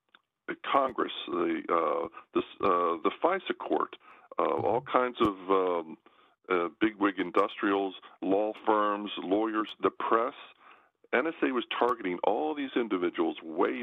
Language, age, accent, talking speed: English, 50-69, American, 120 wpm